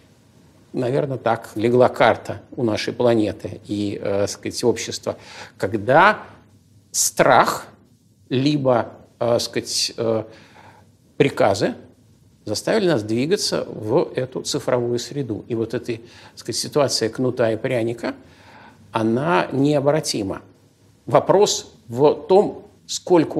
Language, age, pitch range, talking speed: Russian, 50-69, 110-135 Hz, 100 wpm